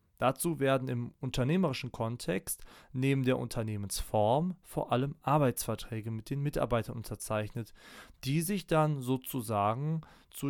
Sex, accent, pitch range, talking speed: male, German, 110-145 Hz, 115 wpm